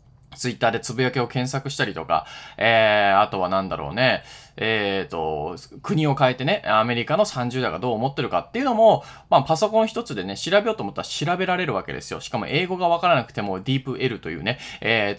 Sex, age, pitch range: male, 20-39, 120-175 Hz